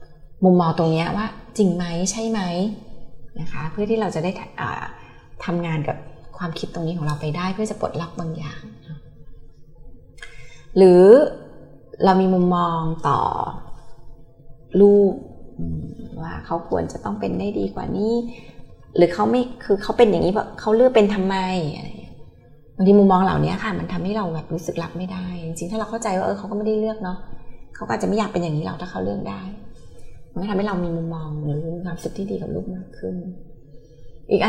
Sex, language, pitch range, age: female, Thai, 160-210 Hz, 20-39